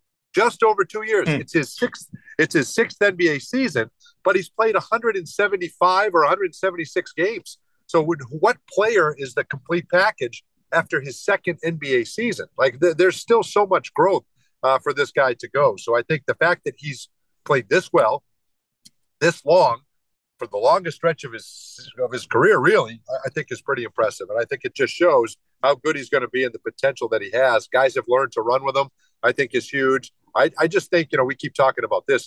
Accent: American